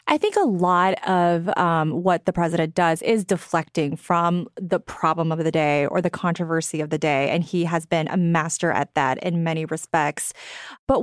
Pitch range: 170-230 Hz